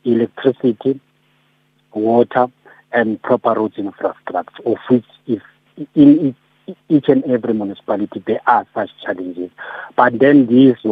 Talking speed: 115 wpm